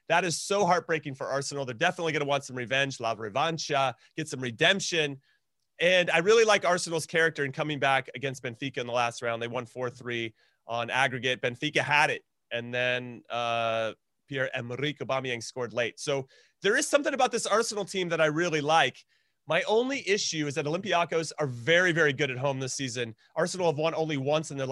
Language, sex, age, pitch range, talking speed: English, male, 30-49, 130-165 Hz, 195 wpm